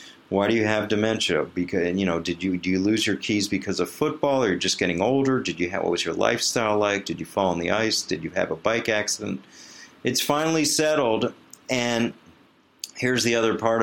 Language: English